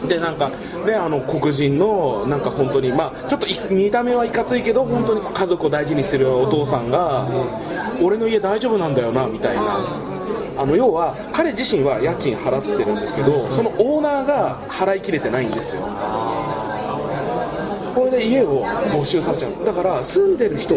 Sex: male